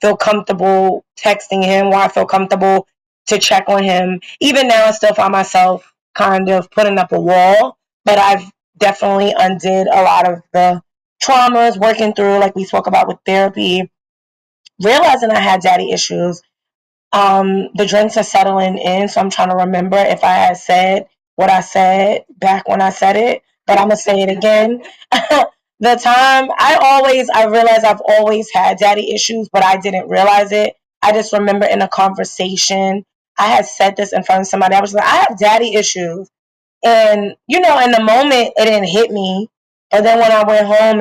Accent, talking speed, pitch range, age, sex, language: American, 185 wpm, 190-215 Hz, 20-39, female, English